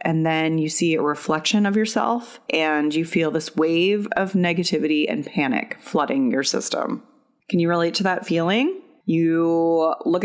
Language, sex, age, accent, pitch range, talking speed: English, female, 30-49, American, 155-195 Hz, 165 wpm